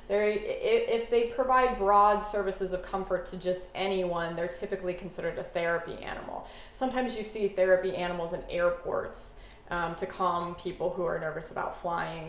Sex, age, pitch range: female, 20-39, 180-220 Hz